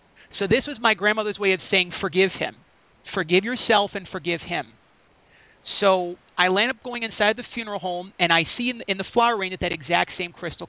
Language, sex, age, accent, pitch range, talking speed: English, male, 30-49, American, 175-215 Hz, 200 wpm